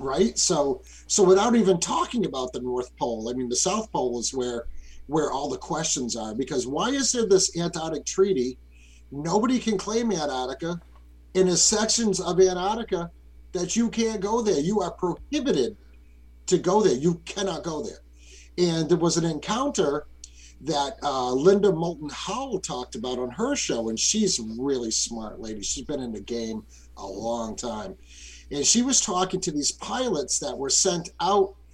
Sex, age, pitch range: male, 50-69, 115-195 Hz